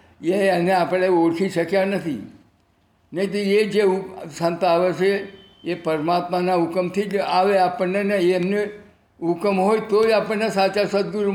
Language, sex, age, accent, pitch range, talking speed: Gujarati, male, 60-79, native, 165-195 Hz, 145 wpm